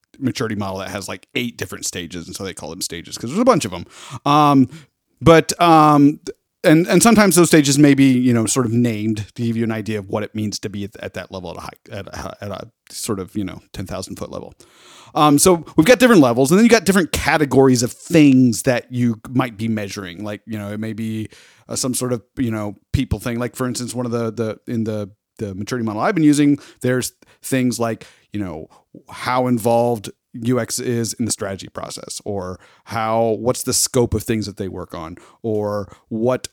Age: 30-49